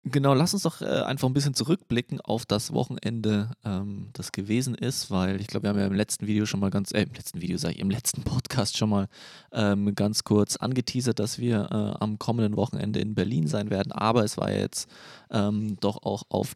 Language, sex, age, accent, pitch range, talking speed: German, male, 20-39, German, 100-120 Hz, 215 wpm